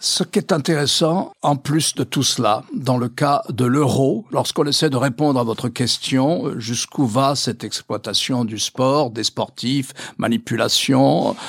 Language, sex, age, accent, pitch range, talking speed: French, male, 60-79, French, 130-165 Hz, 155 wpm